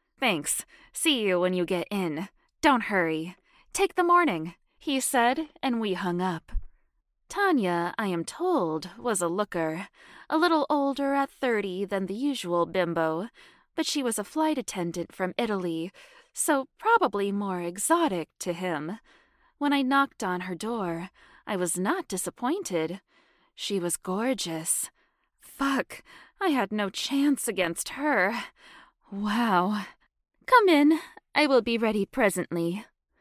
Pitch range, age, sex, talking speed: 180-275 Hz, 20-39, female, 135 wpm